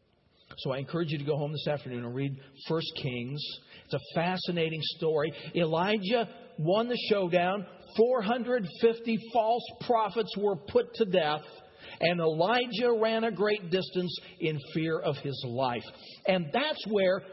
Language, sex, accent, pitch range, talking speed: English, male, American, 150-225 Hz, 145 wpm